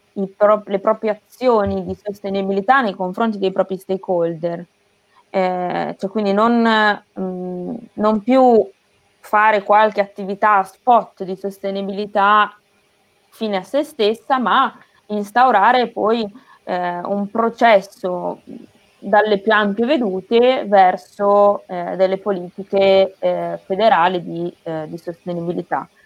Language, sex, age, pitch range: Italian, female, 20-39, 185-220 Hz